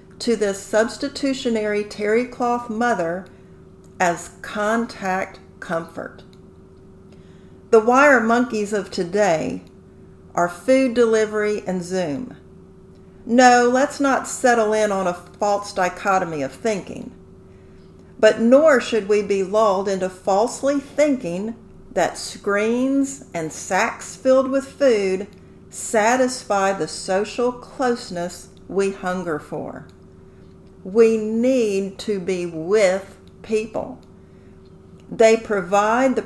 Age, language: 50-69, English